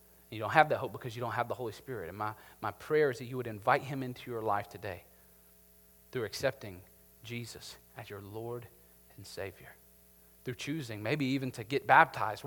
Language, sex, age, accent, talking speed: English, male, 40-59, American, 195 wpm